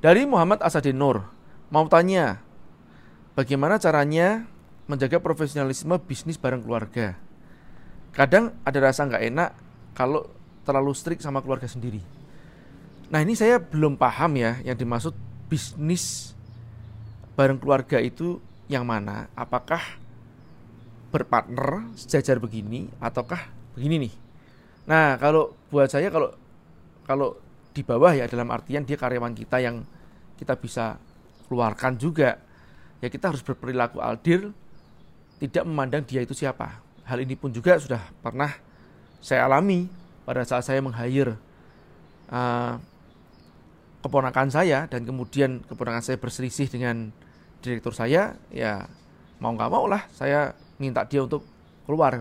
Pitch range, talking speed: 120-150 Hz, 120 wpm